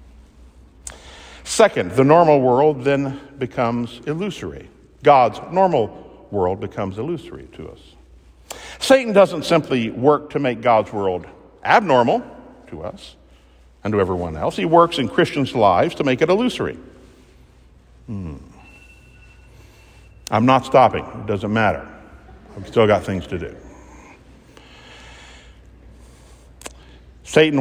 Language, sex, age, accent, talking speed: English, male, 60-79, American, 115 wpm